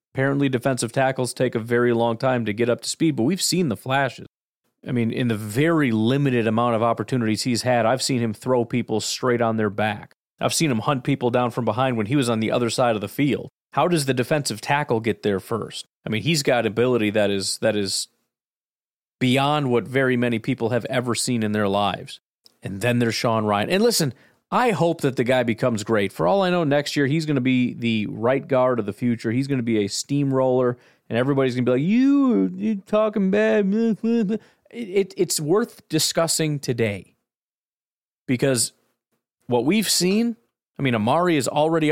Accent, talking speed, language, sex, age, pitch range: American, 205 wpm, English, male, 30-49, 115-150 Hz